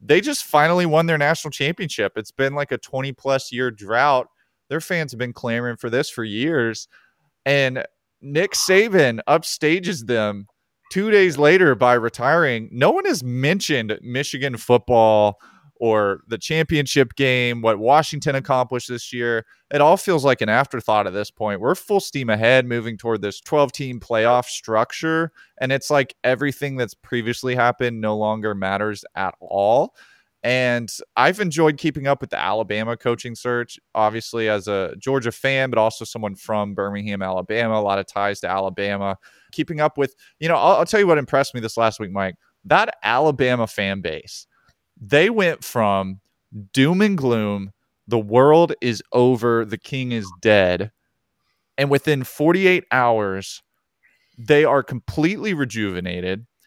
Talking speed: 155 wpm